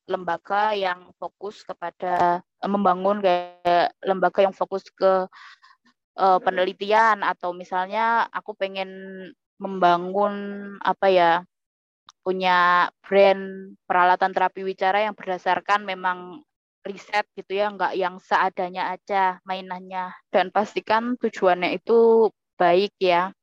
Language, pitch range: Indonesian, 180-200 Hz